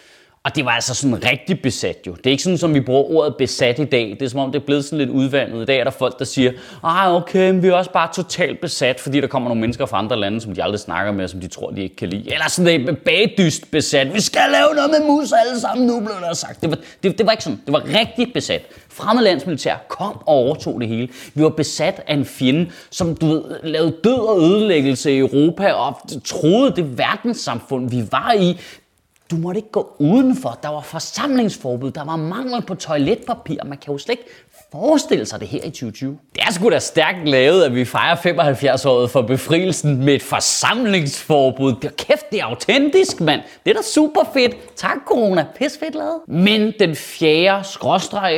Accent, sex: native, male